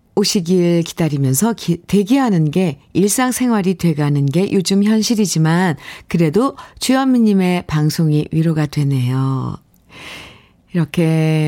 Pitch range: 160-220 Hz